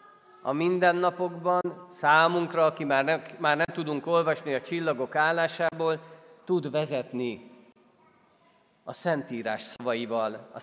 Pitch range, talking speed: 140-185 Hz, 100 wpm